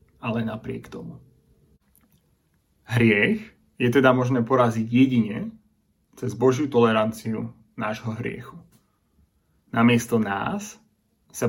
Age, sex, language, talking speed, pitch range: 30-49, male, Slovak, 90 wpm, 115-130 Hz